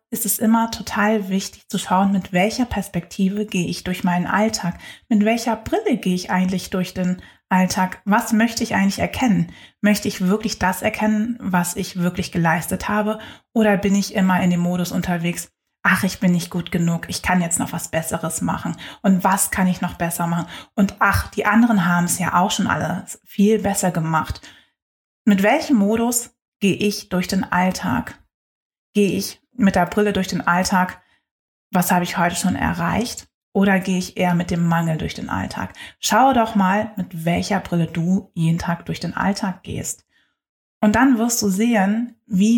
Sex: female